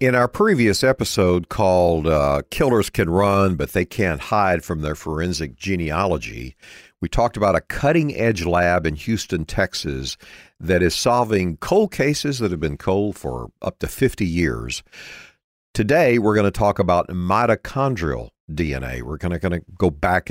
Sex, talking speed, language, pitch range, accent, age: male, 155 wpm, English, 85-115 Hz, American, 50-69